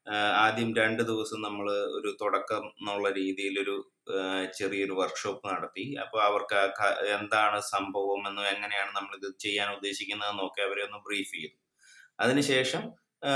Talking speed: 125 wpm